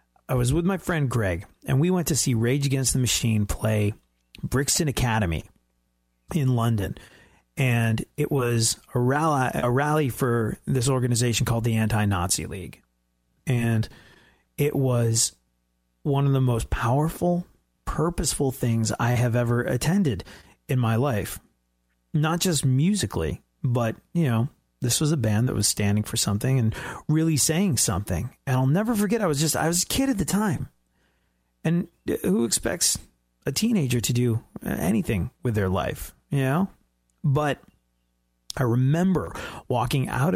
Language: English